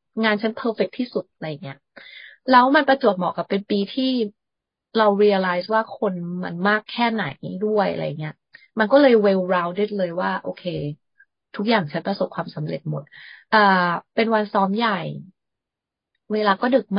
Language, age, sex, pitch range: Thai, 20-39, female, 175-215 Hz